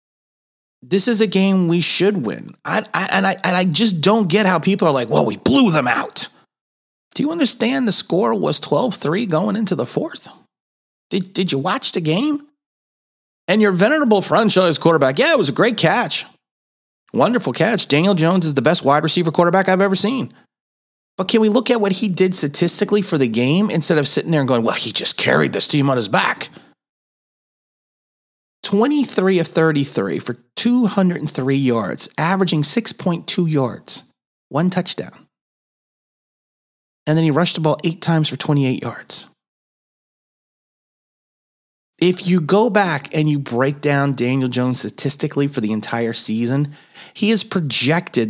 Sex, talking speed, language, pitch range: male, 165 wpm, English, 135-200 Hz